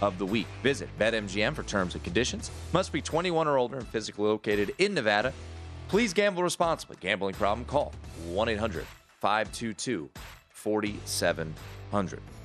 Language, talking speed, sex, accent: English, 140 wpm, male, American